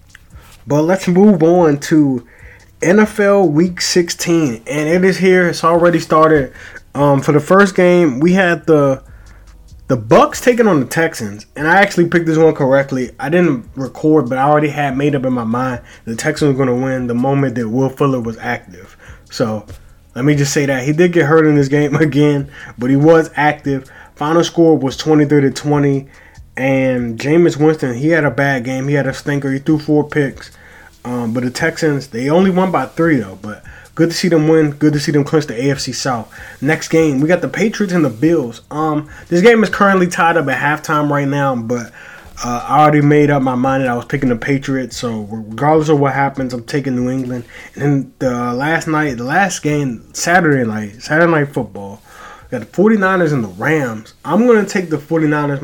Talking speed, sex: 205 wpm, male